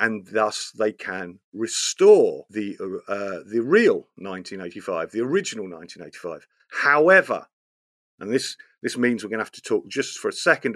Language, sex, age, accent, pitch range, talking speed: English, male, 40-59, British, 110-140 Hz, 155 wpm